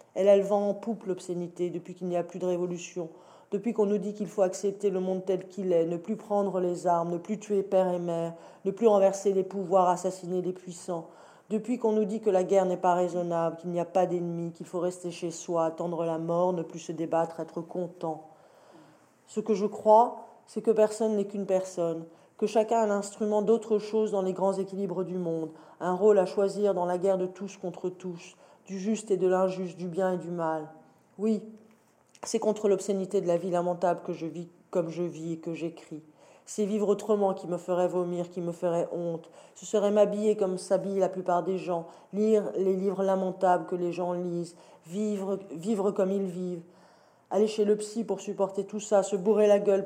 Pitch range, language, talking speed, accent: 175-205 Hz, French, 215 wpm, French